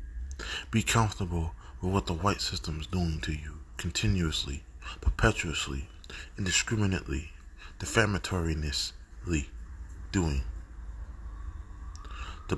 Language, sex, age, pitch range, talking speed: English, male, 20-39, 70-100 Hz, 80 wpm